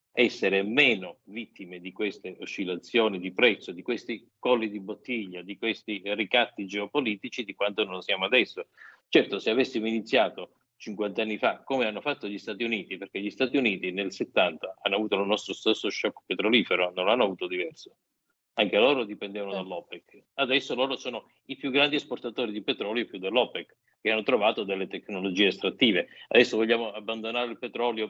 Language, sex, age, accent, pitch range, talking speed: Italian, male, 50-69, native, 100-120 Hz, 165 wpm